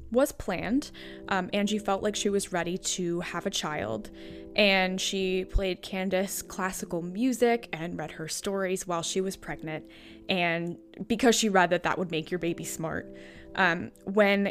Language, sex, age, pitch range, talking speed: English, female, 10-29, 175-210 Hz, 165 wpm